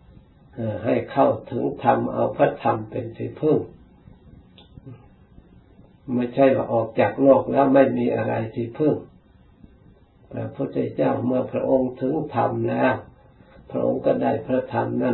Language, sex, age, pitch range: Thai, male, 60-79, 115-135 Hz